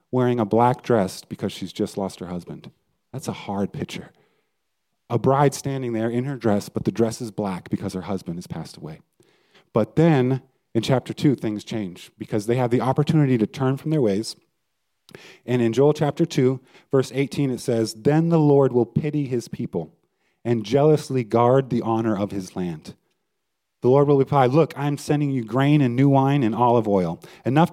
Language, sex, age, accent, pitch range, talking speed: English, male, 30-49, American, 110-145 Hz, 195 wpm